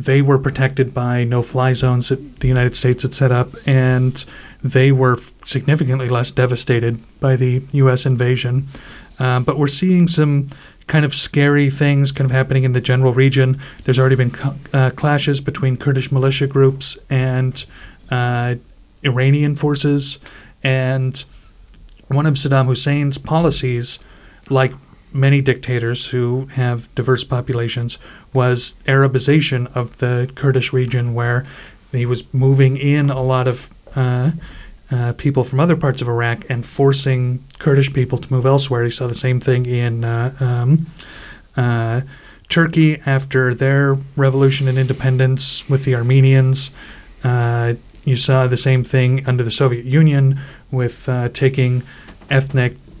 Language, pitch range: English, 125-135 Hz